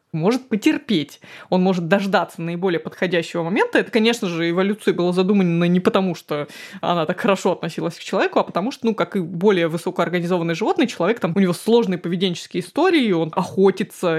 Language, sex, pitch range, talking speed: Russian, female, 170-215 Hz, 175 wpm